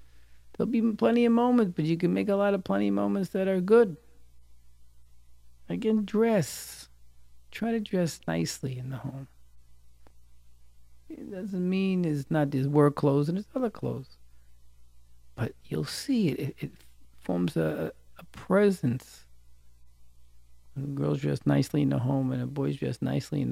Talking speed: 160 wpm